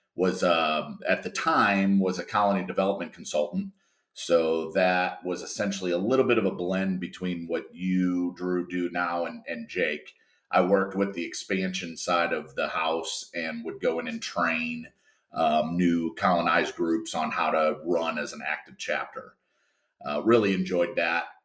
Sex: male